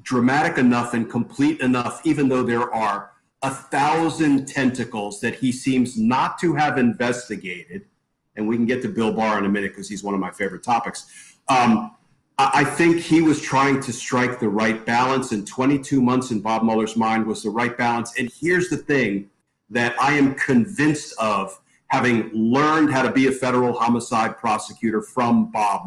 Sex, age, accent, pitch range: male, 40-59, American, 115-140 Hz